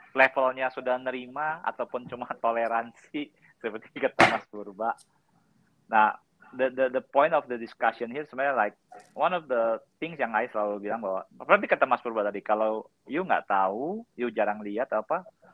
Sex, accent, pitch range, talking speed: male, native, 110-150 Hz, 165 wpm